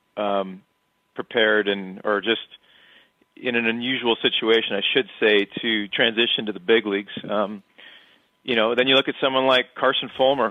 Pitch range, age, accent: 95-115 Hz, 40-59, American